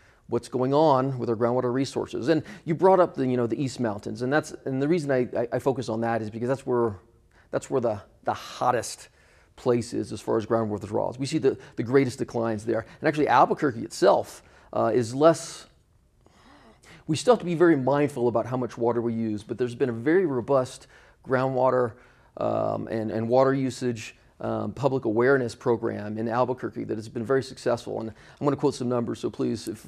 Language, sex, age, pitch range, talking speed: English, male, 40-59, 115-135 Hz, 210 wpm